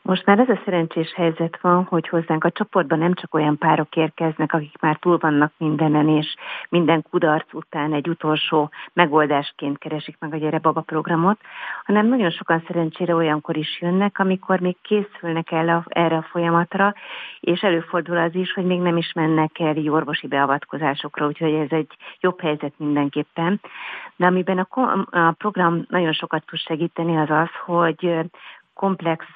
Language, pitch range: Hungarian, 150-175 Hz